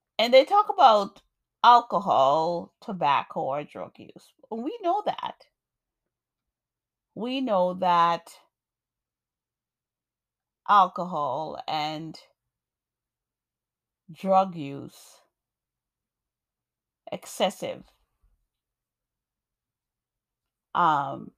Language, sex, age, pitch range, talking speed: English, female, 30-49, 170-210 Hz, 60 wpm